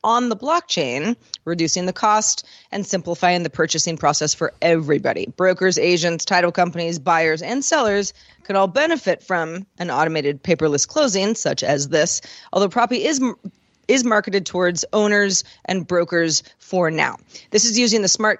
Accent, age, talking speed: American, 30-49, 155 wpm